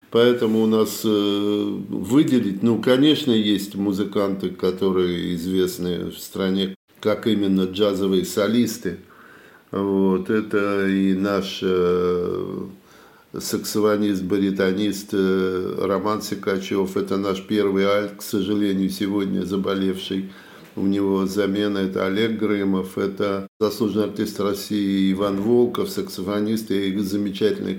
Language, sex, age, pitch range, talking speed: Russian, male, 50-69, 95-110 Hz, 105 wpm